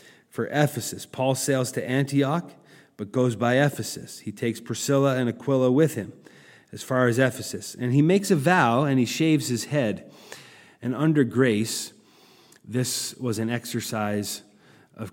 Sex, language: male, English